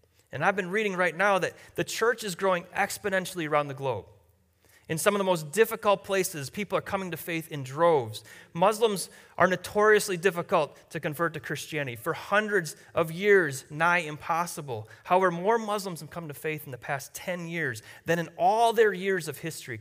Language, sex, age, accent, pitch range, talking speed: English, male, 30-49, American, 150-200 Hz, 190 wpm